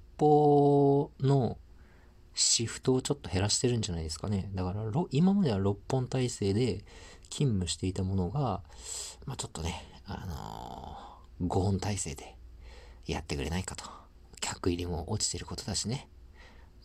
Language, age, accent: Japanese, 40-59, native